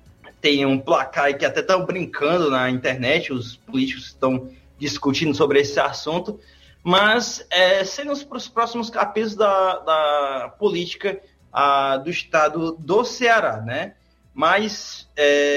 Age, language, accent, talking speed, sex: 20-39, Portuguese, Brazilian, 120 wpm, male